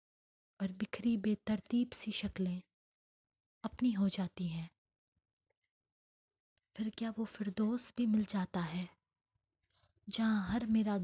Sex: female